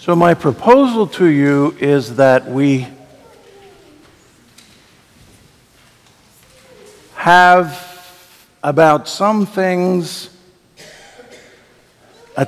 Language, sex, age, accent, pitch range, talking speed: English, male, 60-79, American, 135-185 Hz, 65 wpm